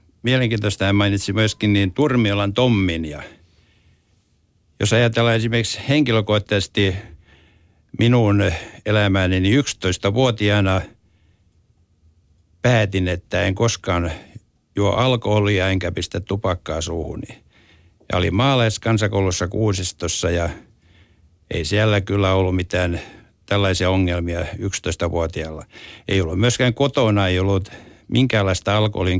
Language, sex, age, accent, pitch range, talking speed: Finnish, male, 60-79, native, 90-110 Hz, 95 wpm